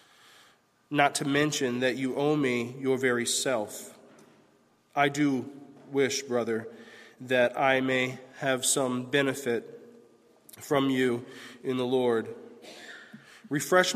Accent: American